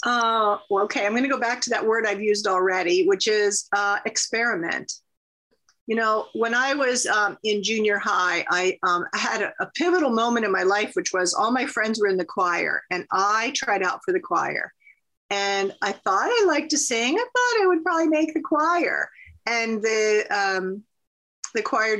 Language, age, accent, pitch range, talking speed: English, 40-59, American, 200-265 Hz, 205 wpm